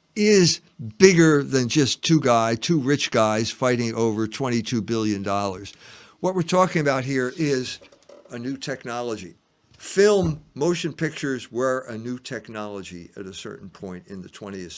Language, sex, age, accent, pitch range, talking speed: English, male, 50-69, American, 110-135 Hz, 155 wpm